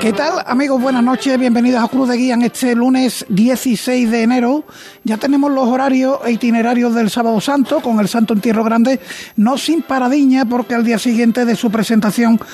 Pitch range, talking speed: 215-245 Hz, 190 wpm